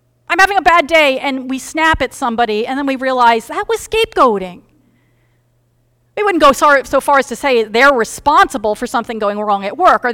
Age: 40-59